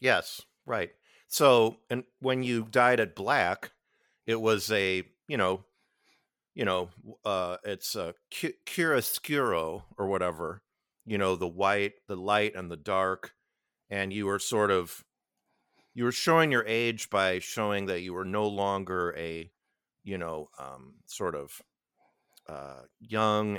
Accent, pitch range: American, 90-110 Hz